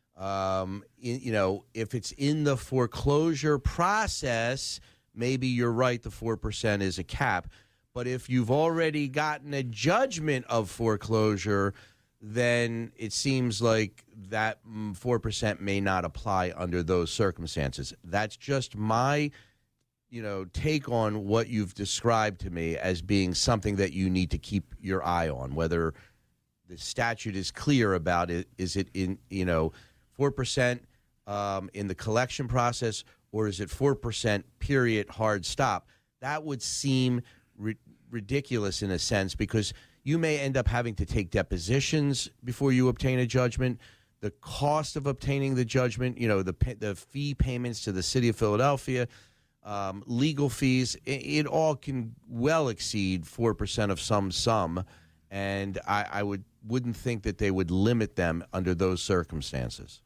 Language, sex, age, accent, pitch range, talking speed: English, male, 40-59, American, 95-125 Hz, 155 wpm